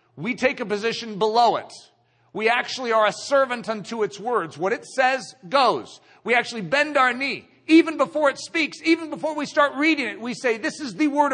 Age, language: 50-69, English